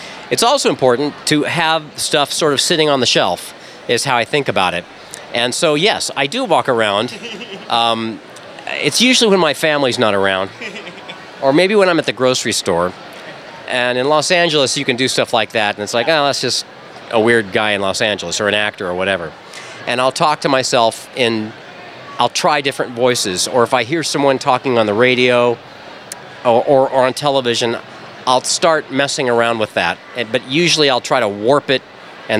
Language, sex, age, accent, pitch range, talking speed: English, male, 40-59, American, 110-140 Hz, 195 wpm